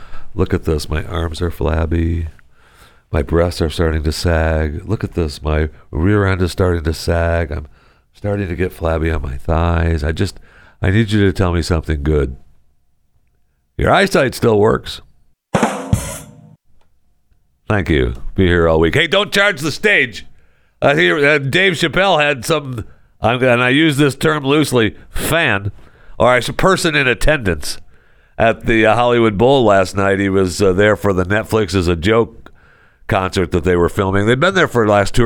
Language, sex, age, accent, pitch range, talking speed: English, male, 60-79, American, 80-115 Hz, 175 wpm